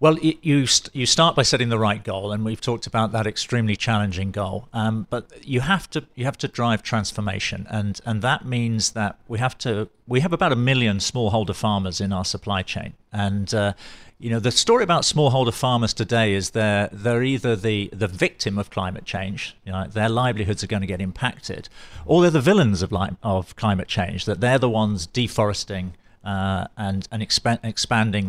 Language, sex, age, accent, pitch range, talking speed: English, male, 50-69, British, 100-125 Hz, 205 wpm